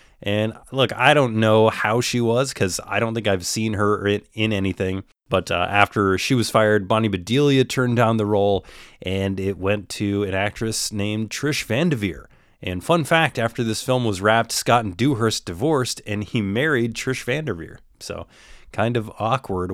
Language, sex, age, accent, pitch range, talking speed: English, male, 30-49, American, 100-125 Hz, 180 wpm